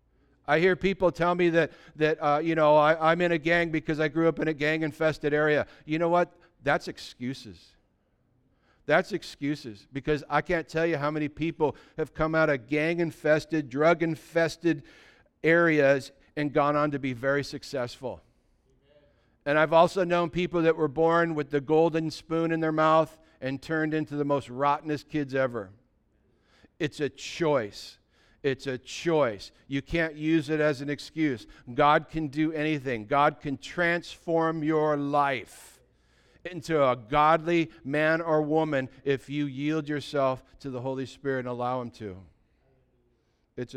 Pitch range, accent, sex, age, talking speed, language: 135-160 Hz, American, male, 50-69, 160 wpm, English